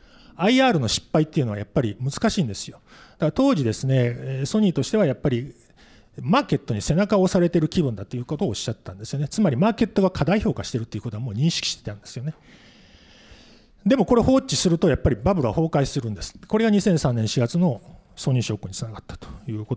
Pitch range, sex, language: 115-195 Hz, male, Japanese